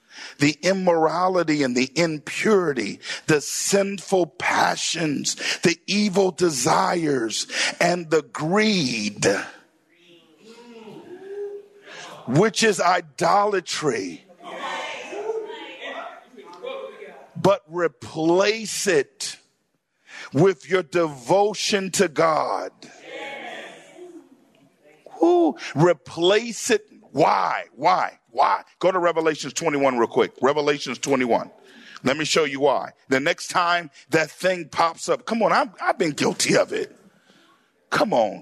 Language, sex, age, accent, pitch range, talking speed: English, male, 50-69, American, 165-220 Hz, 95 wpm